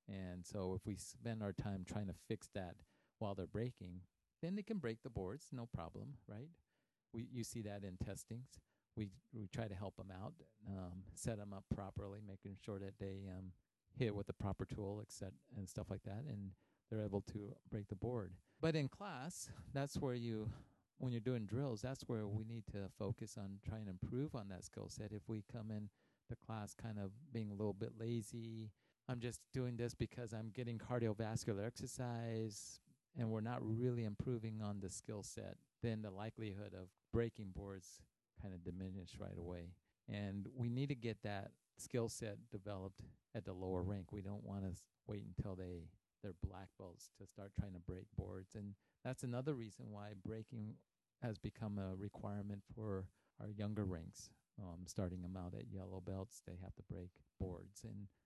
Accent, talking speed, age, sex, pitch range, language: American, 195 wpm, 40-59, male, 95-115 Hz, English